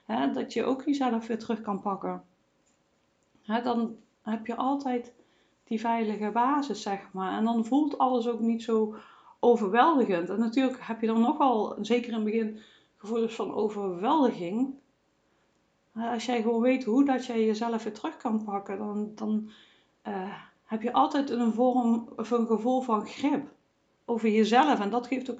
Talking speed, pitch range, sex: 170 wpm, 215-255 Hz, female